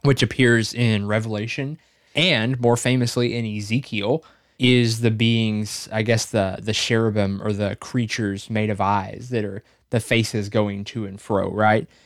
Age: 20-39